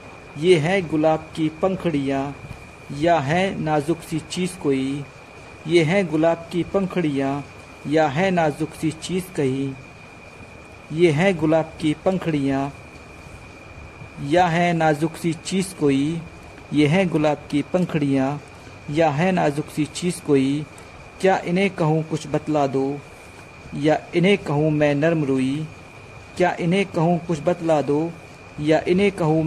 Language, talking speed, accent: Hindi, 130 wpm, native